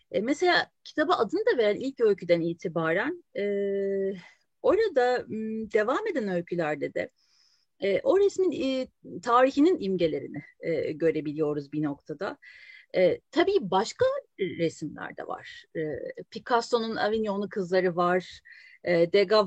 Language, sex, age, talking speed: Turkish, female, 40-59, 90 wpm